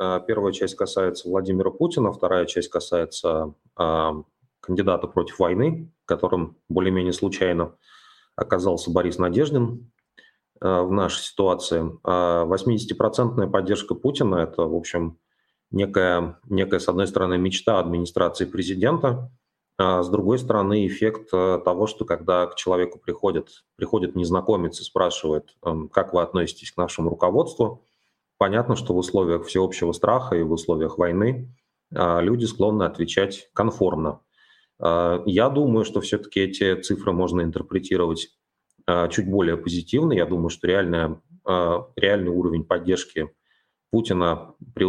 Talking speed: 115 wpm